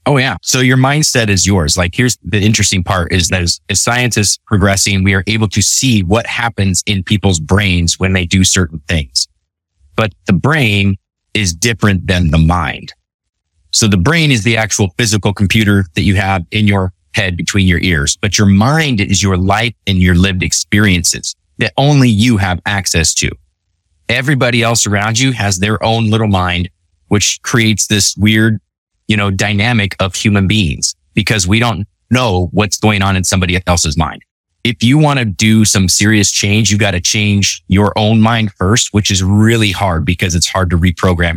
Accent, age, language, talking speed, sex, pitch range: American, 30-49, English, 185 wpm, male, 90-110 Hz